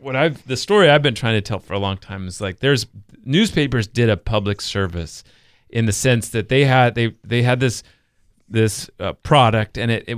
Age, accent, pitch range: 40-59, American, 100-130 Hz